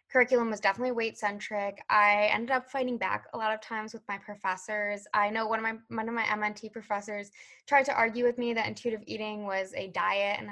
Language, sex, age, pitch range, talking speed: English, female, 10-29, 205-250 Hz, 215 wpm